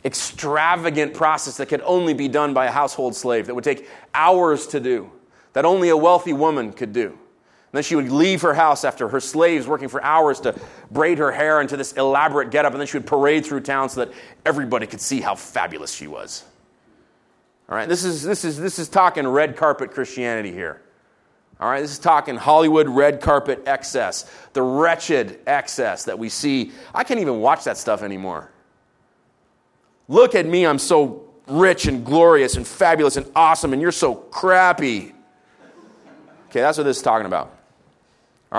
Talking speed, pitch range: 185 wpm, 105-155 Hz